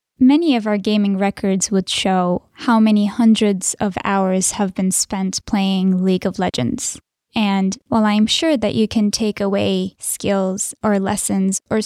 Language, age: English, 10-29